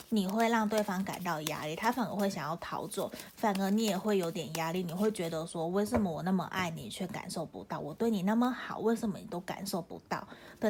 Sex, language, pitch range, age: female, Chinese, 175-220 Hz, 30-49